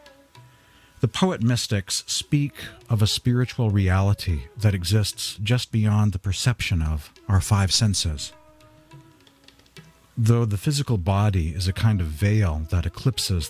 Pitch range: 90-120 Hz